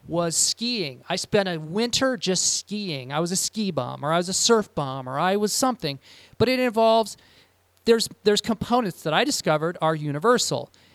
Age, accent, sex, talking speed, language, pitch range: 30-49, American, male, 185 wpm, English, 155-210 Hz